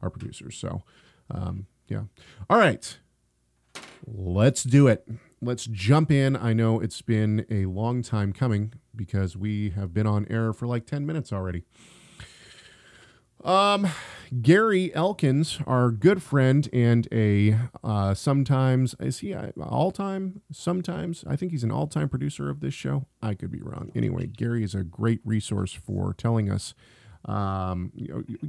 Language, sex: English, male